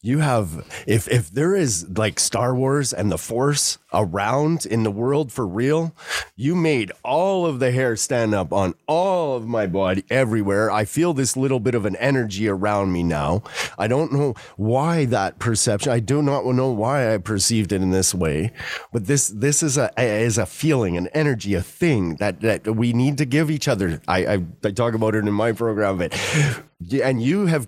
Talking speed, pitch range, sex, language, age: 200 wpm, 105-135 Hz, male, English, 30-49